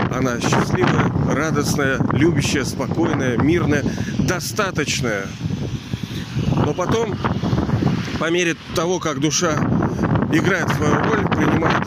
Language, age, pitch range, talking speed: Russian, 40-59, 135-175 Hz, 90 wpm